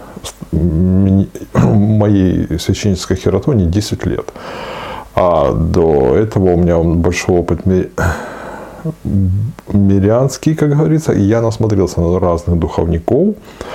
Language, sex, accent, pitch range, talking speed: Russian, male, native, 85-110 Hz, 95 wpm